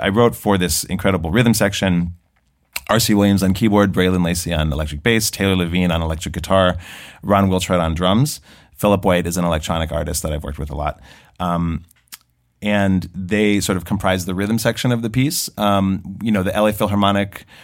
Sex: male